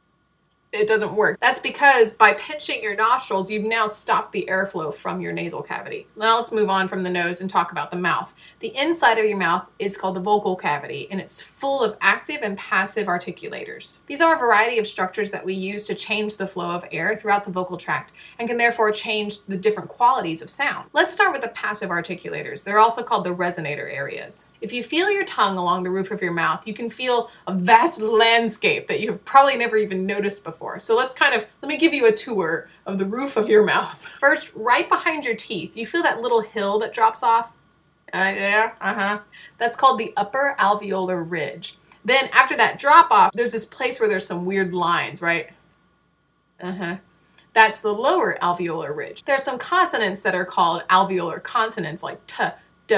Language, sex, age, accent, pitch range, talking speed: English, female, 30-49, American, 185-245 Hz, 205 wpm